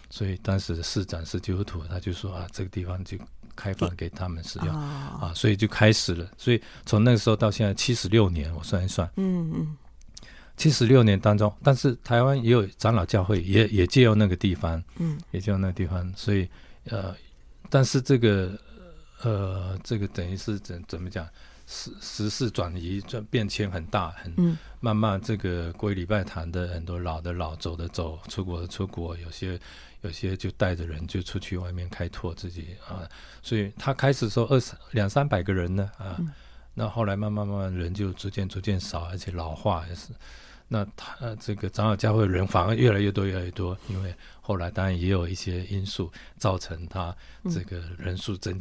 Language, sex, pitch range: Chinese, male, 90-110 Hz